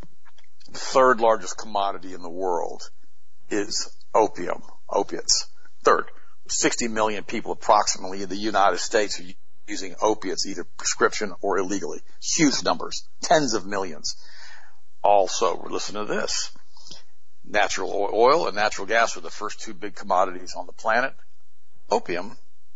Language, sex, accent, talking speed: English, male, American, 130 wpm